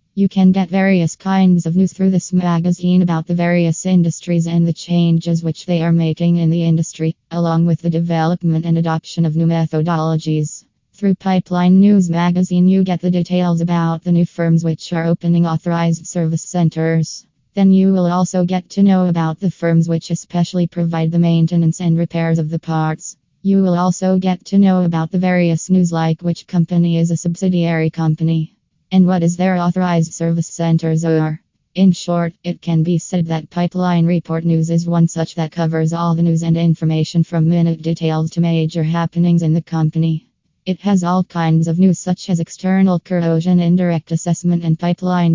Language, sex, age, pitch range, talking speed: English, female, 20-39, 165-180 Hz, 185 wpm